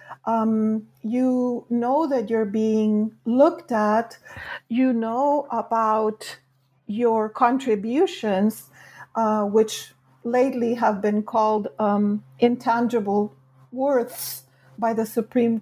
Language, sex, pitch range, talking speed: English, female, 215-245 Hz, 95 wpm